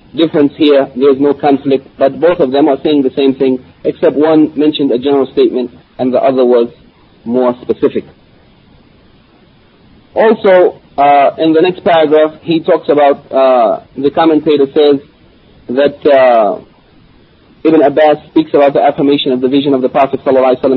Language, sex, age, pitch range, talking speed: English, male, 40-59, 130-150 Hz, 155 wpm